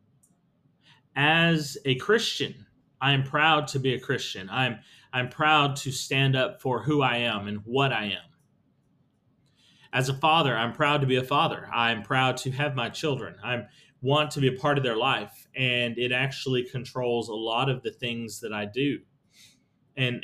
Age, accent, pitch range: 30-49, American, 125-150 Hz